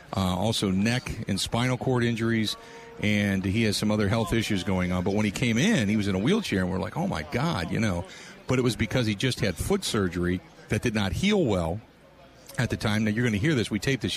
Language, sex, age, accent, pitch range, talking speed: English, male, 40-59, American, 100-130 Hz, 255 wpm